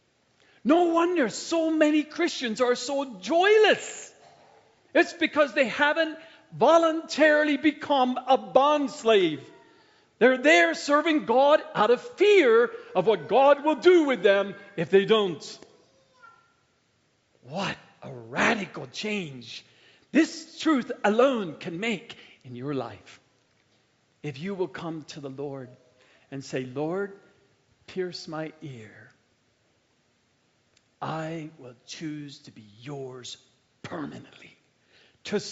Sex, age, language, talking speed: male, 50-69, English, 115 wpm